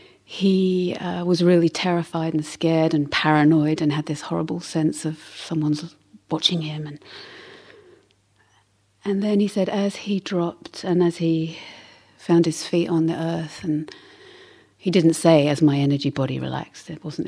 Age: 40-59